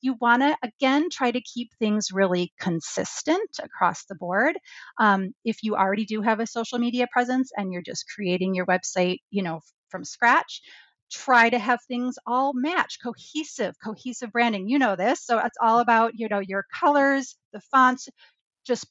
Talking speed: 175 wpm